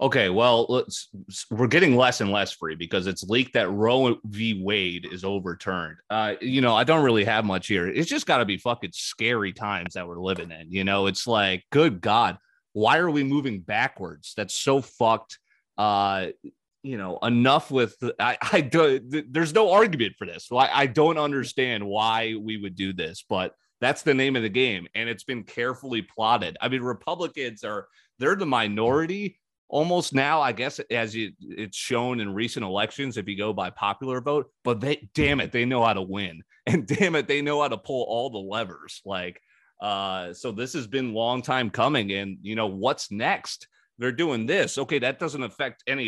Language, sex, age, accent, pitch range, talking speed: English, male, 30-49, American, 100-130 Hz, 200 wpm